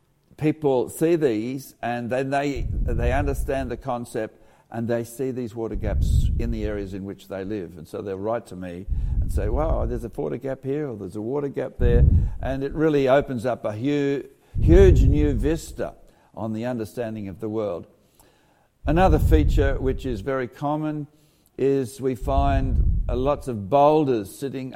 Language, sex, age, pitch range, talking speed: English, male, 60-79, 100-135 Hz, 170 wpm